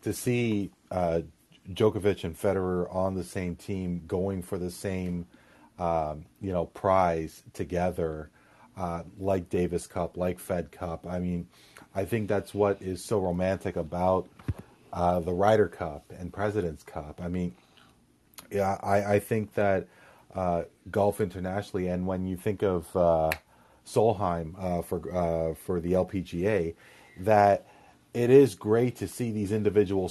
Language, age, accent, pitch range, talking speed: English, 40-59, American, 85-100 Hz, 150 wpm